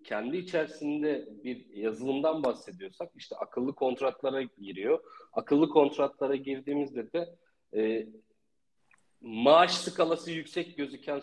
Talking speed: 95 wpm